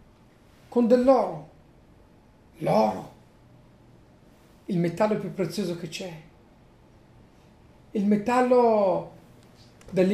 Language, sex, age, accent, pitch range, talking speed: Italian, male, 50-69, native, 170-265 Hz, 70 wpm